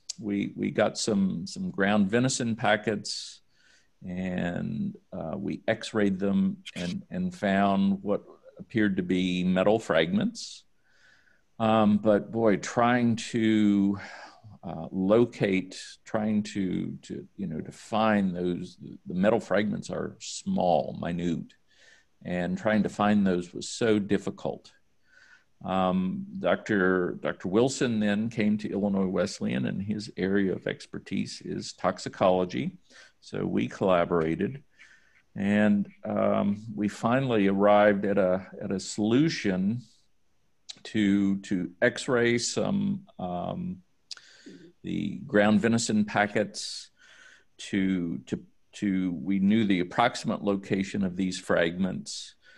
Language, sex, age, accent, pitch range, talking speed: English, male, 50-69, American, 95-115 Hz, 115 wpm